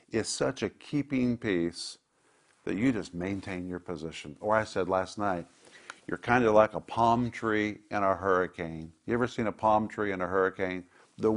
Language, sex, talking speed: English, male, 190 wpm